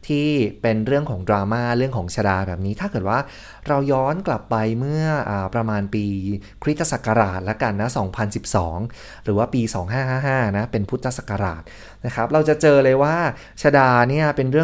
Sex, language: male, Thai